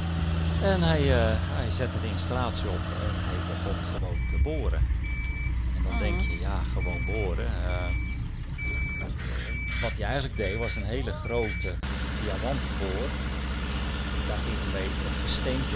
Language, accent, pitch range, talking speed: Dutch, Dutch, 70-95 Hz, 145 wpm